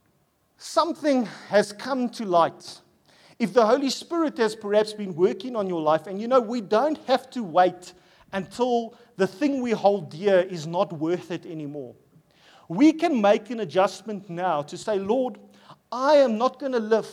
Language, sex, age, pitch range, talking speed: English, male, 40-59, 175-240 Hz, 175 wpm